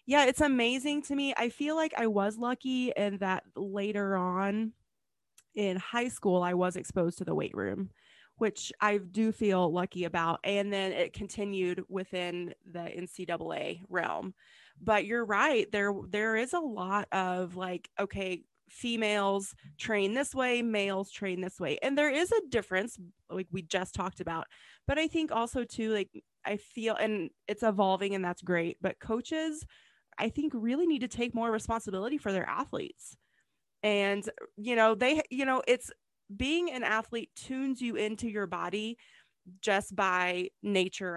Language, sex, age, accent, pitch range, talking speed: English, female, 20-39, American, 190-235 Hz, 165 wpm